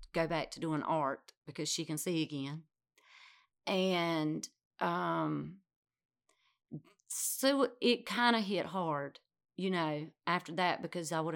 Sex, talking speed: female, 130 wpm